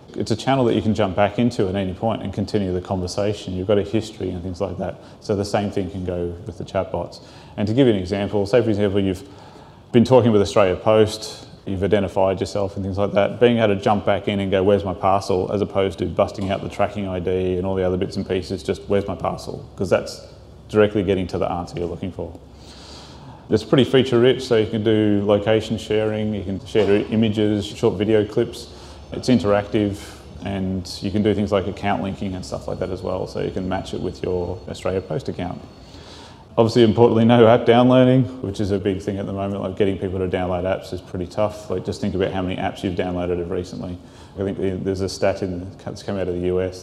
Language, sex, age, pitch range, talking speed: English, male, 30-49, 90-105 Hz, 230 wpm